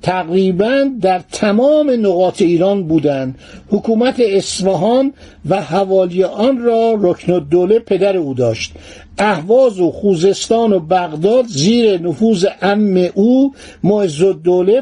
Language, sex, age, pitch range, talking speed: Persian, male, 60-79, 180-225 Hz, 115 wpm